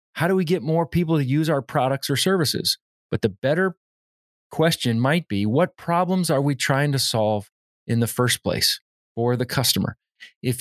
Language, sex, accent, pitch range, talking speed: English, male, American, 115-145 Hz, 185 wpm